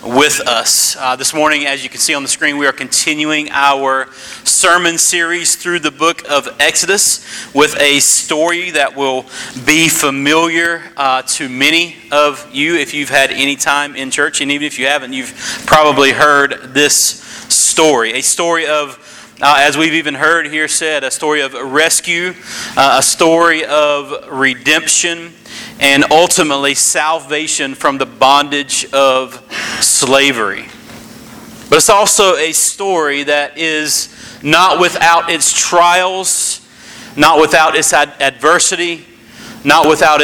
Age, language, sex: 40-59, English, male